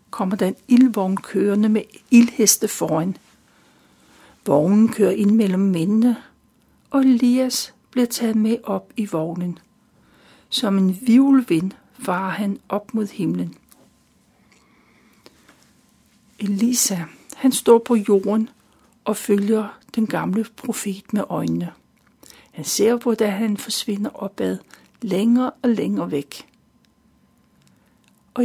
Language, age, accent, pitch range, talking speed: Danish, 60-79, native, 200-240 Hz, 110 wpm